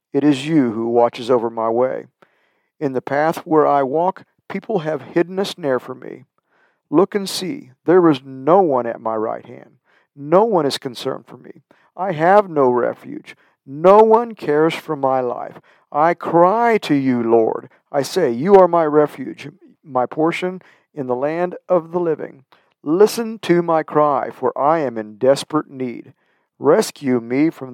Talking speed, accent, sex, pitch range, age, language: 175 wpm, American, male, 125-165 Hz, 50-69, English